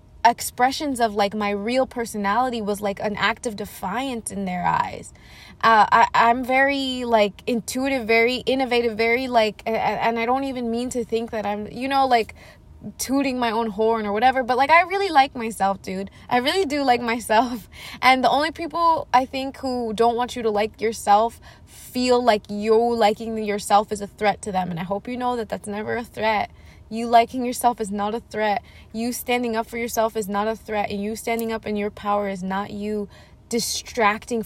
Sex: female